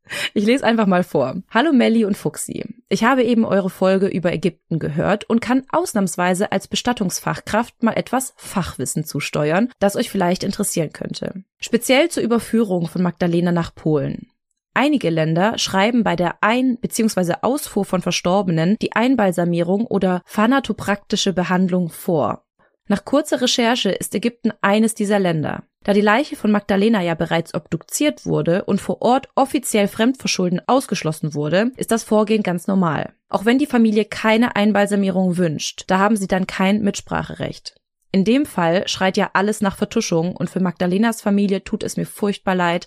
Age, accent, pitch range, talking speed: 20-39, German, 180-225 Hz, 160 wpm